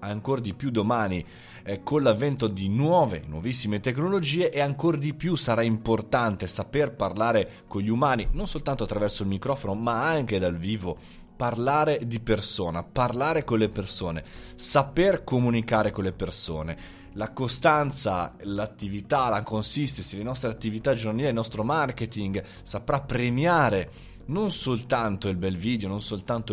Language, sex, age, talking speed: Italian, male, 20-39, 145 wpm